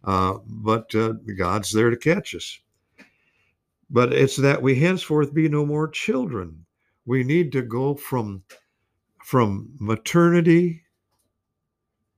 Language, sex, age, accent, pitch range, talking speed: English, male, 60-79, American, 110-145 Hz, 120 wpm